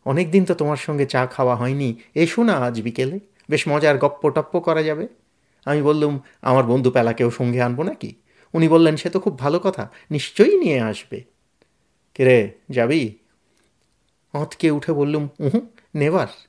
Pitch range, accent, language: 125-185 Hz, native, Bengali